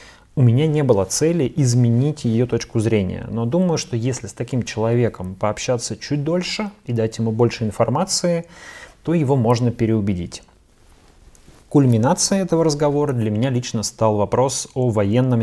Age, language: 30-49, Russian